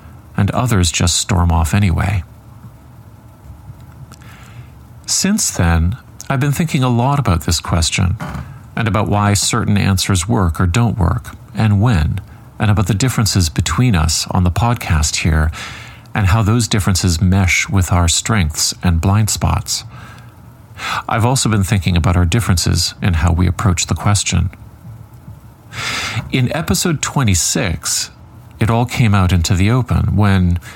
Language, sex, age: English, male, 40-59